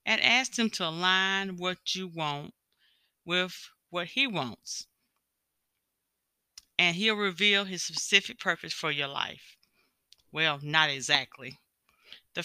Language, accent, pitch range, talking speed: English, American, 150-195 Hz, 120 wpm